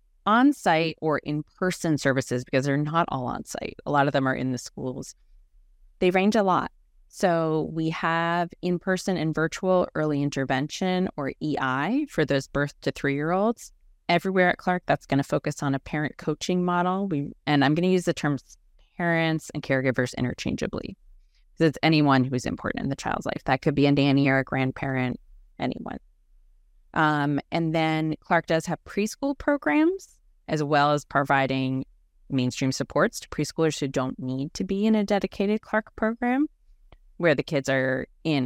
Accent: American